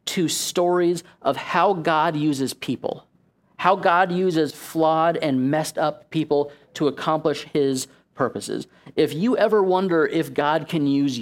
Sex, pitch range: male, 140-175 Hz